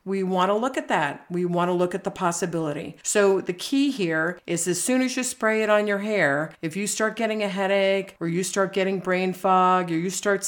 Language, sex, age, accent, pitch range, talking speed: English, female, 50-69, American, 170-205 Hz, 240 wpm